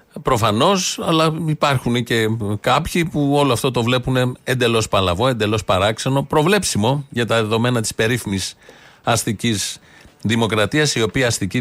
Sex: male